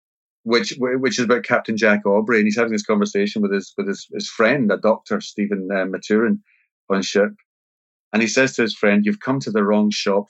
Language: English